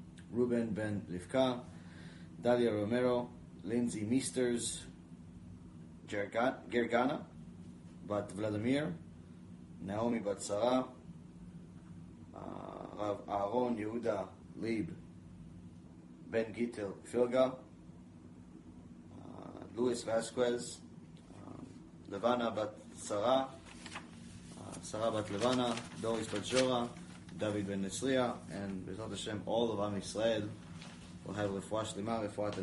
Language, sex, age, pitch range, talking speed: English, male, 20-39, 85-120 Hz, 75 wpm